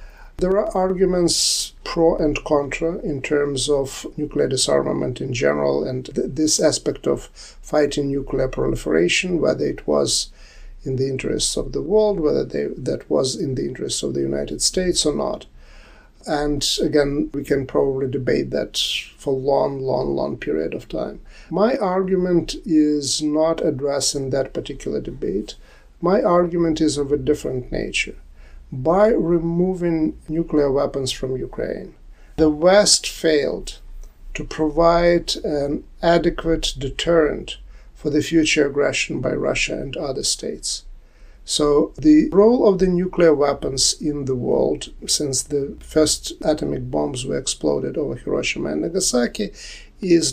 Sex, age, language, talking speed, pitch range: male, 50-69, English, 140 wpm, 135-170 Hz